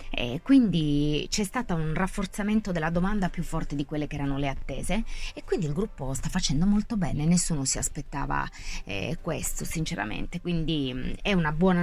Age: 20-39